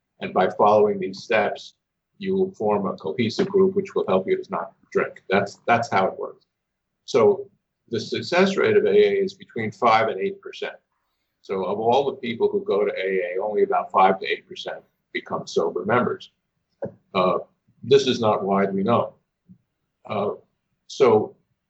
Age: 50-69